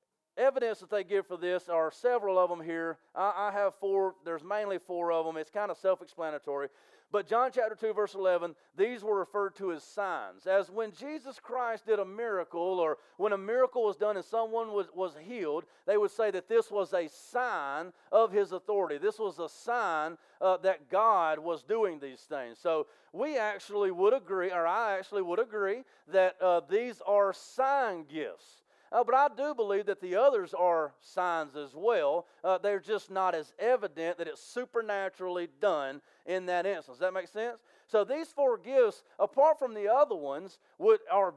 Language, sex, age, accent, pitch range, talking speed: English, male, 40-59, American, 185-245 Hz, 190 wpm